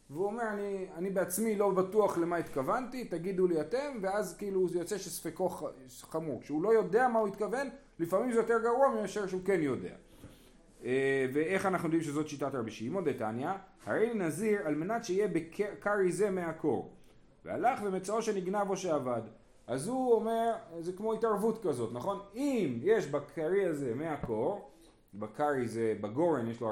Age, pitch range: 30-49, 155-210 Hz